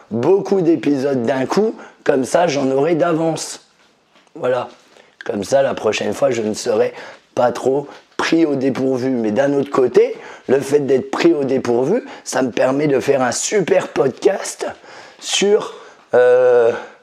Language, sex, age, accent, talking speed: French, male, 30-49, French, 150 wpm